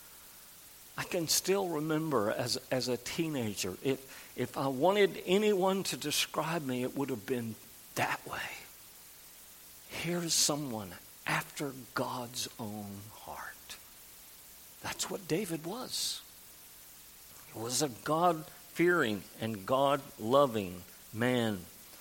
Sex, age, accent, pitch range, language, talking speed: male, 50-69, American, 105-150 Hz, English, 105 wpm